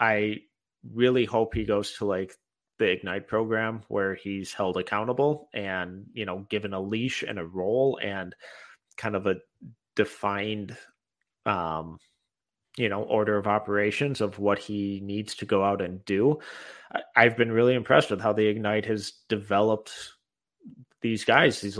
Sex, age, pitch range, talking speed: male, 30-49, 100-115 Hz, 155 wpm